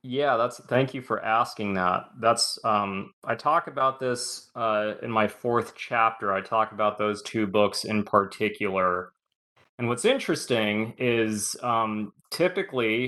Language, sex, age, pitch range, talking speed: English, male, 20-39, 105-120 Hz, 145 wpm